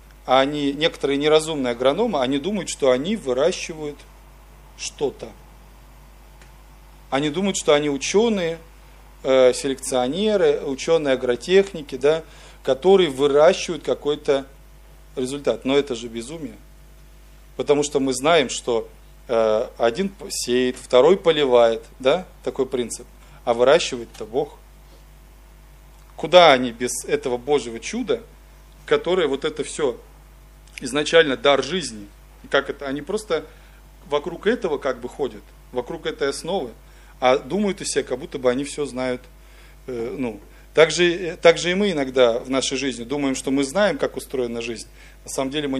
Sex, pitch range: male, 130-170 Hz